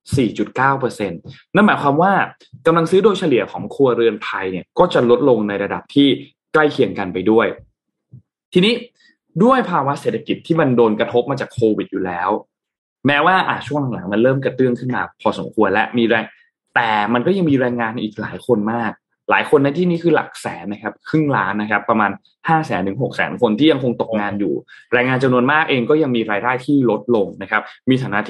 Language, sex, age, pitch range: Thai, male, 20-39, 115-155 Hz